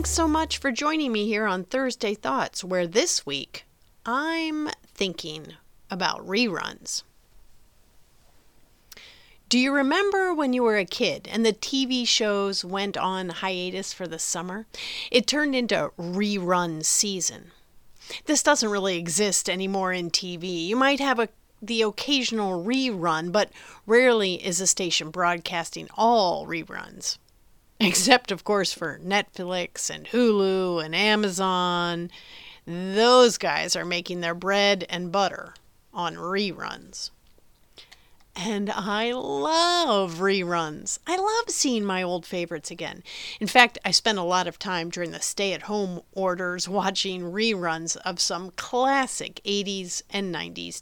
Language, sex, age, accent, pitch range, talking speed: English, female, 40-59, American, 180-240 Hz, 135 wpm